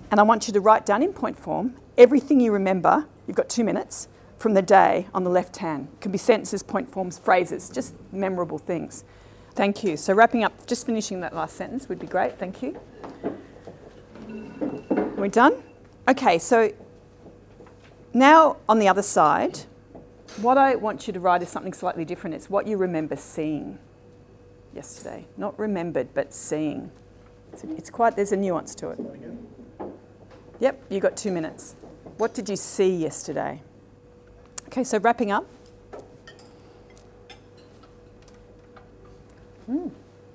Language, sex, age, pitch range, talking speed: English, female, 40-59, 155-225 Hz, 150 wpm